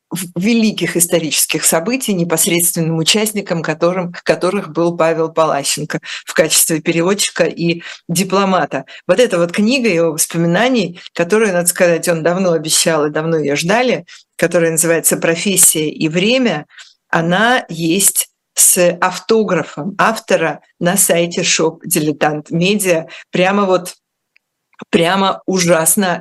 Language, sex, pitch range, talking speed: Russian, female, 170-205 Hz, 115 wpm